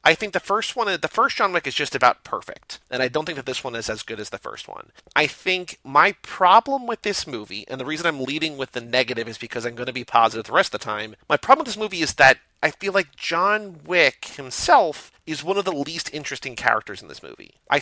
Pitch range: 130-175 Hz